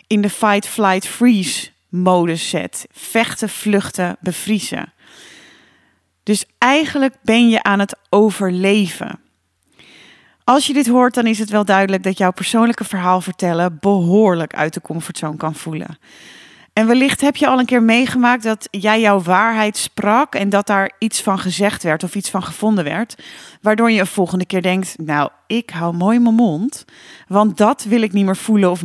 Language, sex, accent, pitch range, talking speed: Dutch, female, Dutch, 190-245 Hz, 165 wpm